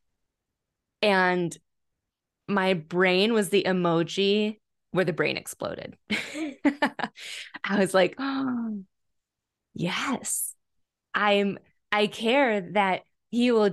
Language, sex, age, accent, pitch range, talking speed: English, female, 20-39, American, 190-245 Hz, 85 wpm